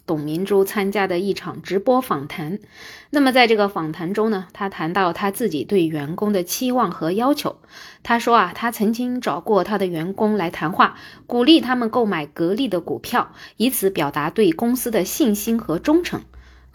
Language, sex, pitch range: Chinese, female, 180-250 Hz